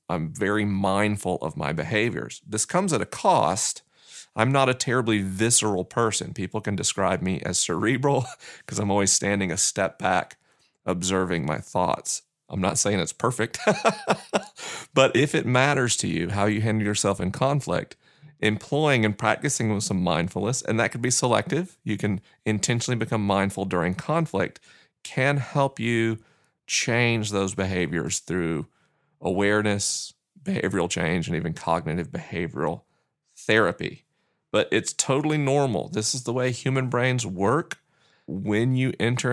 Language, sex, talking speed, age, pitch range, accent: English, male, 150 wpm, 30-49, 95-120 Hz, American